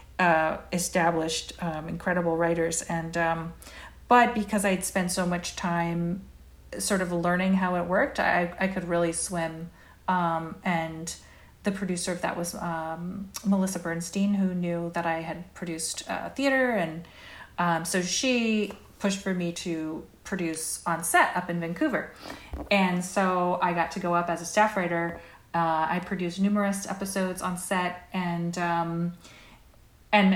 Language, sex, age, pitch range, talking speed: English, female, 40-59, 170-200 Hz, 155 wpm